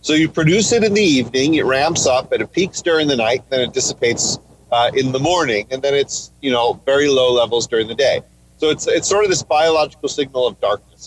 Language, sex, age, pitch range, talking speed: English, male, 40-59, 120-170 Hz, 240 wpm